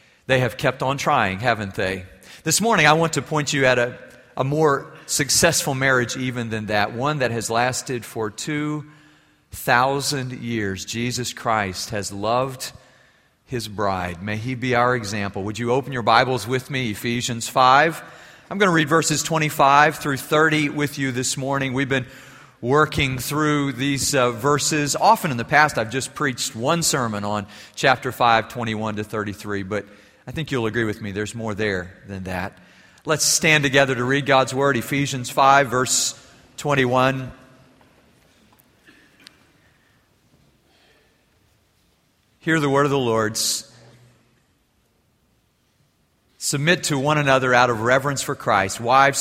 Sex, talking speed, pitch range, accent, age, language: male, 150 wpm, 110-140 Hz, American, 40-59, English